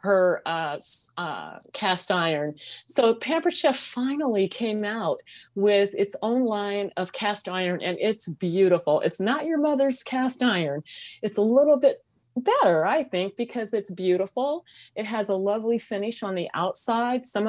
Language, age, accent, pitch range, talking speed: English, 30-49, American, 180-225 Hz, 160 wpm